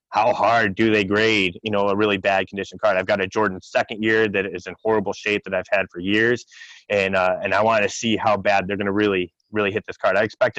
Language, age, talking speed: English, 20-39, 265 wpm